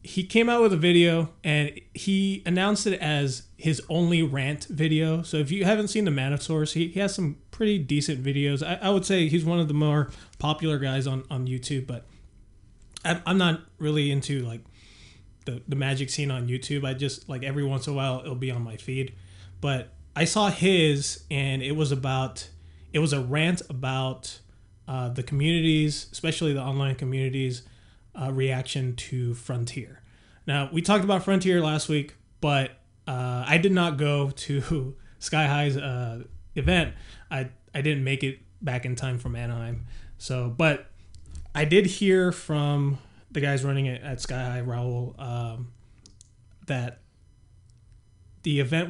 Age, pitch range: 30-49, 120-155 Hz